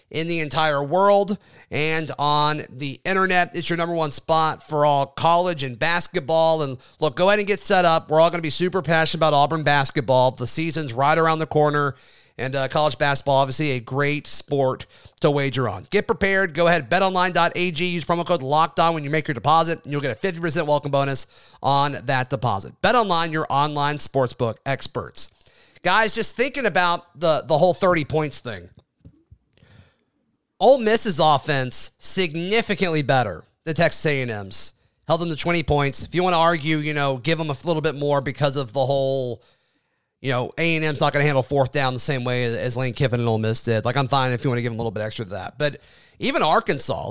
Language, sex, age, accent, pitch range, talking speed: English, male, 30-49, American, 135-170 Hz, 200 wpm